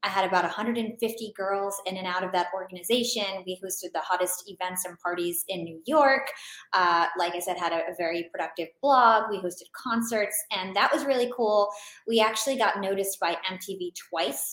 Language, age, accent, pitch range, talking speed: English, 20-39, American, 175-210 Hz, 190 wpm